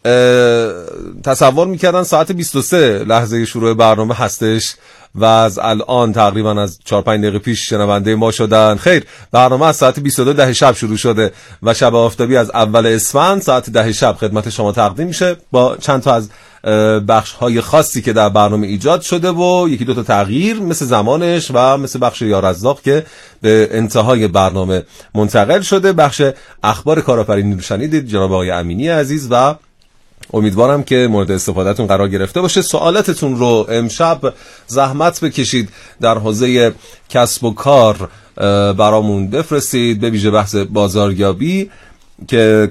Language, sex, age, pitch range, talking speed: Persian, male, 30-49, 100-130 Hz, 145 wpm